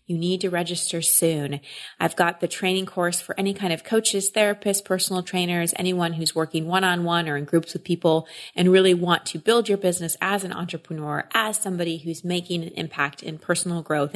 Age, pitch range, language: 30-49, 160-190 Hz, English